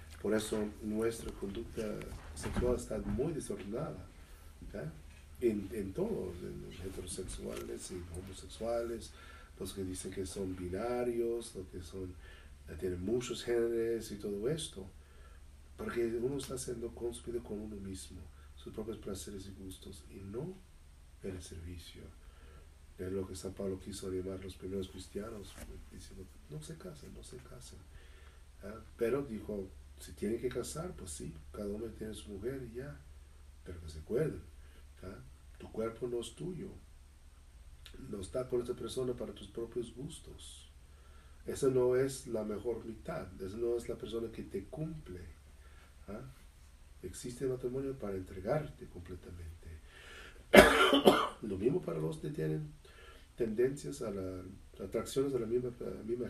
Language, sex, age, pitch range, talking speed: English, male, 40-59, 75-110 Hz, 145 wpm